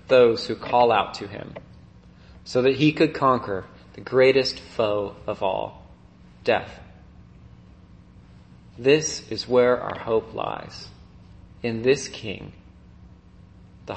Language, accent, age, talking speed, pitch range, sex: English, American, 30-49, 115 wpm, 95-150 Hz, male